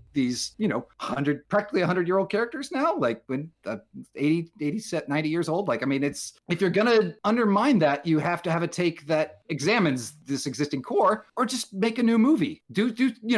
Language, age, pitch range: English, 40-59, 145-205 Hz